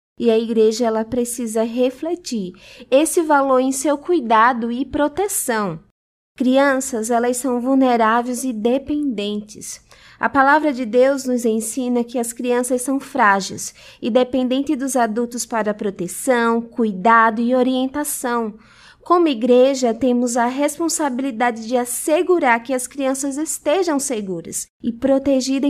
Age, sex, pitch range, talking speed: 20-39, female, 230-285 Hz, 120 wpm